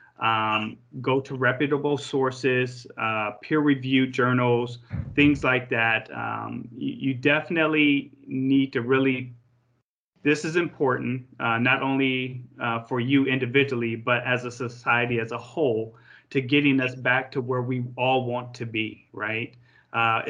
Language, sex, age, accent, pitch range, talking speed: English, male, 30-49, American, 120-140 Hz, 140 wpm